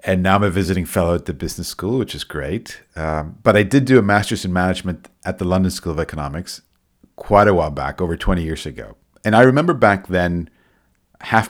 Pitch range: 80-100 Hz